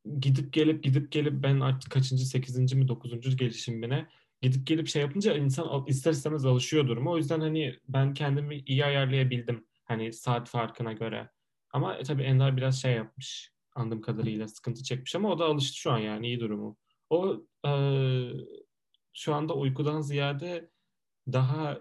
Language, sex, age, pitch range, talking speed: Turkish, male, 10-29, 120-145 Hz, 155 wpm